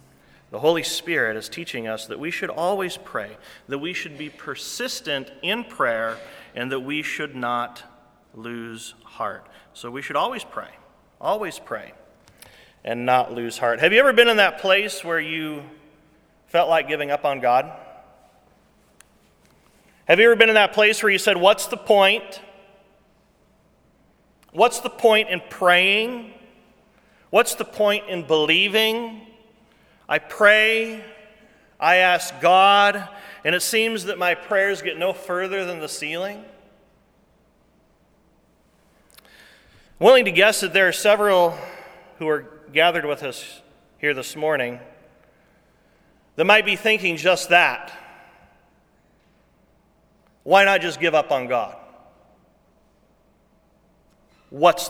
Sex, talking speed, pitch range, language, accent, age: male, 130 wpm, 155-210 Hz, English, American, 40-59